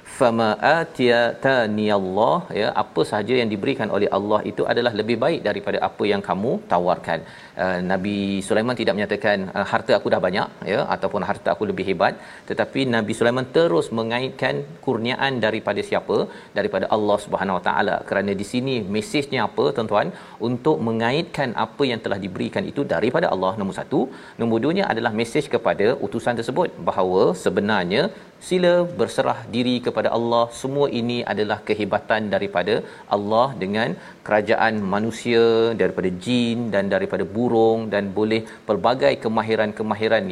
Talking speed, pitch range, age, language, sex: 145 wpm, 110-130 Hz, 40-59, Malayalam, male